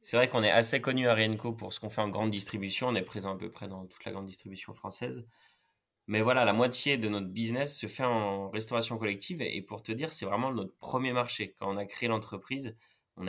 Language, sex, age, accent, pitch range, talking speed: French, male, 20-39, French, 100-120 Hz, 245 wpm